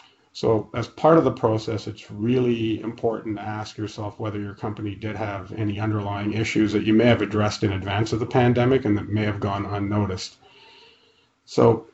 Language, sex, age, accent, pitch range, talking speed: English, male, 40-59, American, 105-115 Hz, 185 wpm